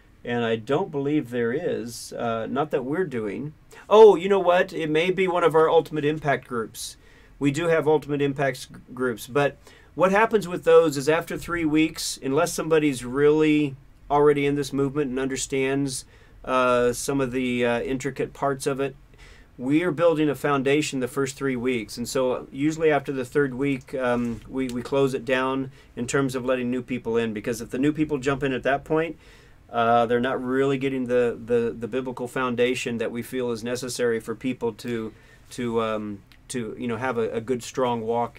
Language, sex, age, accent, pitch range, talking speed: English, male, 40-59, American, 120-150 Hz, 195 wpm